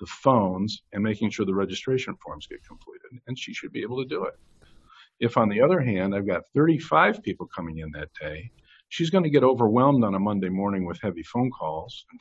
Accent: American